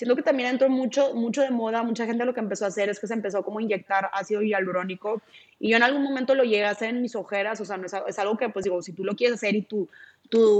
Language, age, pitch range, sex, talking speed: Spanish, 20-39, 205-240 Hz, female, 300 wpm